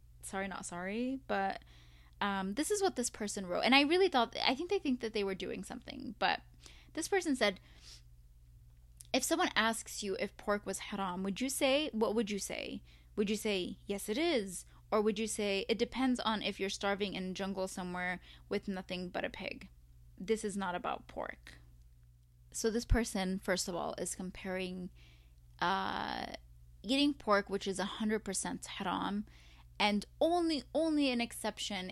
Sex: female